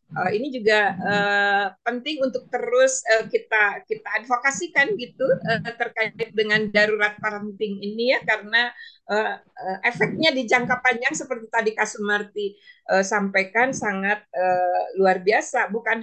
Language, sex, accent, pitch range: Indonesian, female, native, 210-270 Hz